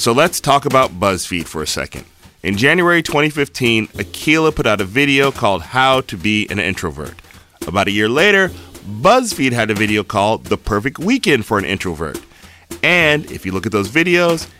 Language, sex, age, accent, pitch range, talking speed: English, male, 30-49, American, 95-140 Hz, 180 wpm